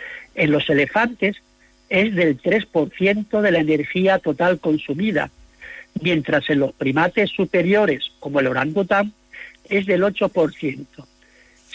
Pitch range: 155-215 Hz